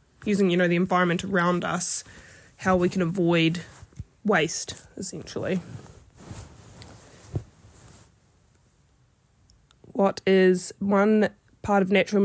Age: 20-39